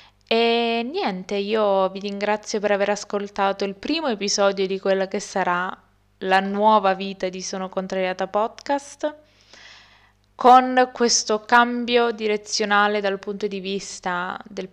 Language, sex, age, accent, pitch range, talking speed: Italian, female, 20-39, native, 185-215 Hz, 125 wpm